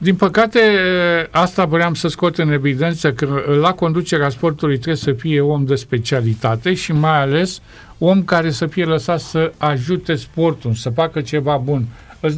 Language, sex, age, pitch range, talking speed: Romanian, male, 50-69, 130-165 Hz, 165 wpm